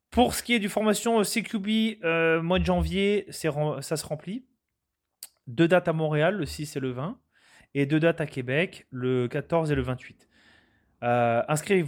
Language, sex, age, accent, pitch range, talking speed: French, male, 30-49, French, 135-185 Hz, 180 wpm